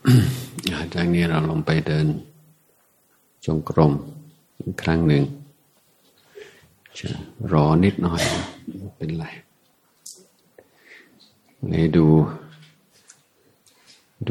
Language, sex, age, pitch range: Thai, male, 60-79, 75-95 Hz